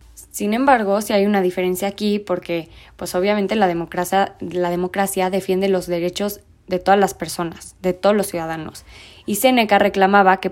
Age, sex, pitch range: 20-39, female, 175-200 Hz